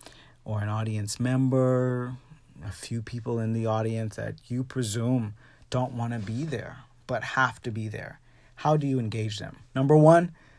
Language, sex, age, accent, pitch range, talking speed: English, male, 30-49, American, 110-135 Hz, 170 wpm